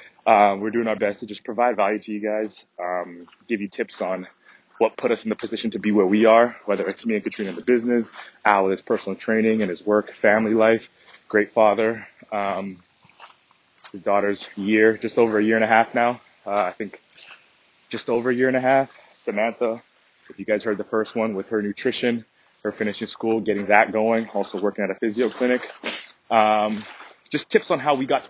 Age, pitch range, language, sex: 20-39, 105-120 Hz, English, male